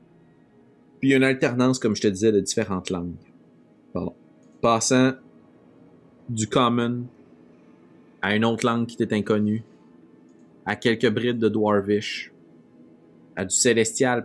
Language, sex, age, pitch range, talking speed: French, male, 30-49, 90-110 Hz, 130 wpm